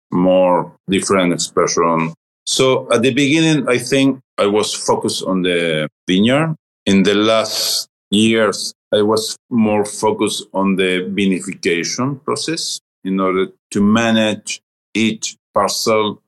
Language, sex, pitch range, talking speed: English, male, 90-115 Hz, 120 wpm